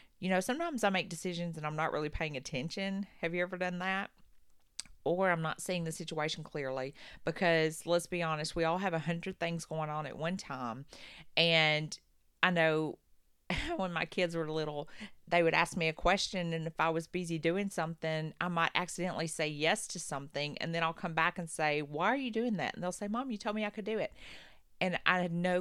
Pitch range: 155-190 Hz